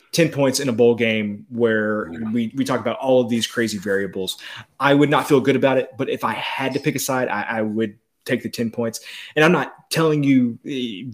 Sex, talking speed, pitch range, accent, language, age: male, 235 wpm, 110-130 Hz, American, English, 20-39